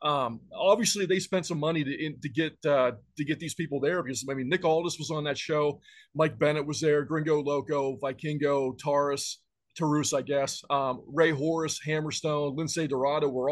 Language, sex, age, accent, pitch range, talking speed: English, male, 30-49, American, 140-165 Hz, 190 wpm